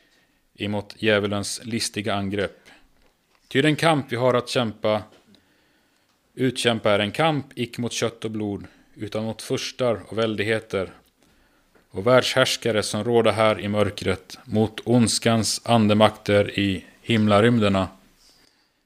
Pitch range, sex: 110-130 Hz, male